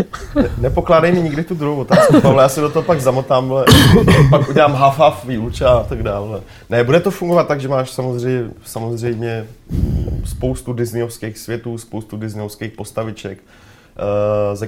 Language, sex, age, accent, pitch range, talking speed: Czech, male, 30-49, native, 100-120 Hz, 145 wpm